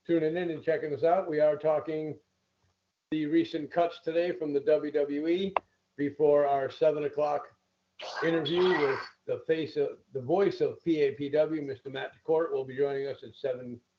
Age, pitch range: 50-69, 150-205 Hz